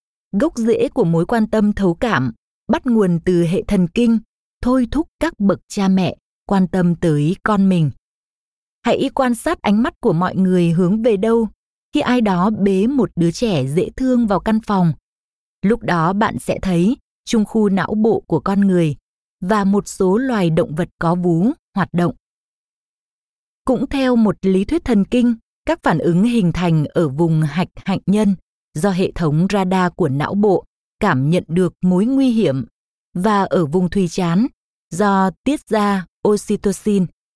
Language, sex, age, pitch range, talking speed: Vietnamese, female, 20-39, 180-230 Hz, 175 wpm